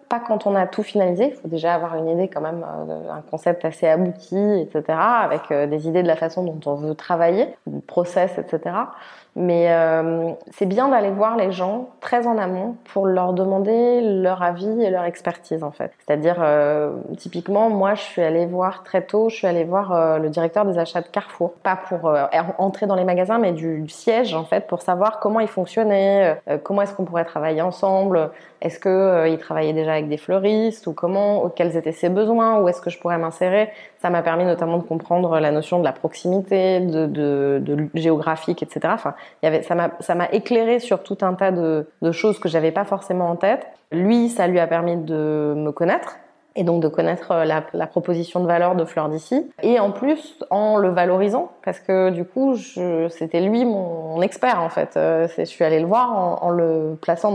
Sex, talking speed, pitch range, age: female, 215 wpm, 165-200 Hz, 20-39